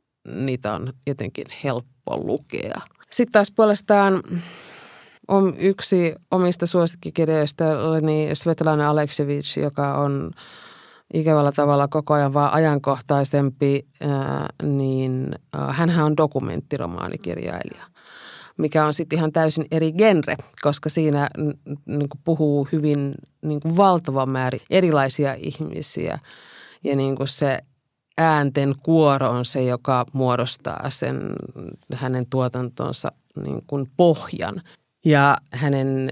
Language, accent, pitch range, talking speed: Finnish, native, 130-160 Hz, 95 wpm